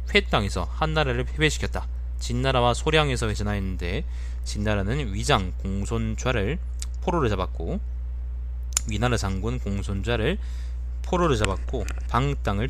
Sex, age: male, 20-39